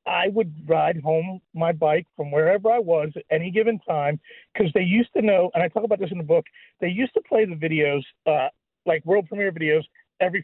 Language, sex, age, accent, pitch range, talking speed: English, male, 40-59, American, 160-210 Hz, 225 wpm